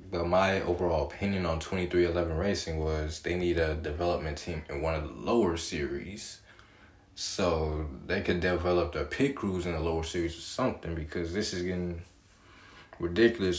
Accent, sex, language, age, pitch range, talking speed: American, male, English, 20-39, 85-100 Hz, 170 wpm